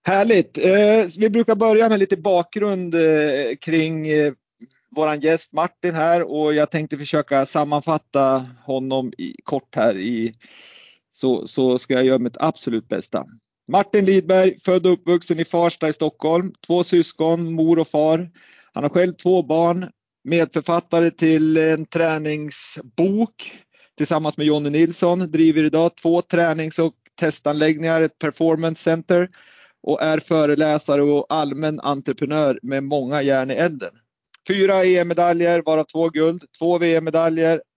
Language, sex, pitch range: Swedish, male, 150-175 Hz